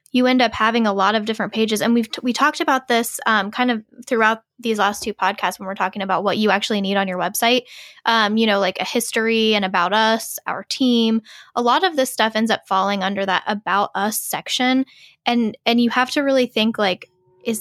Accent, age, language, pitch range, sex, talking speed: American, 10-29, English, 195-230 Hz, female, 230 wpm